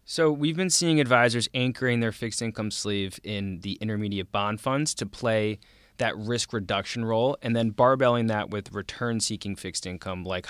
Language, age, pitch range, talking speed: English, 20-39, 95-115 Hz, 175 wpm